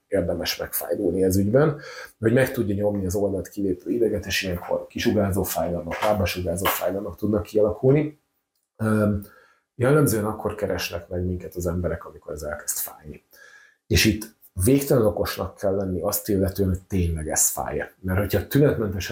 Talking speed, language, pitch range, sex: 140 wpm, Hungarian, 95-110 Hz, male